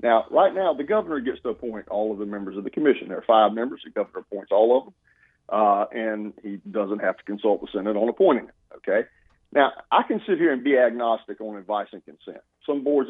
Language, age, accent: English, 40-59, American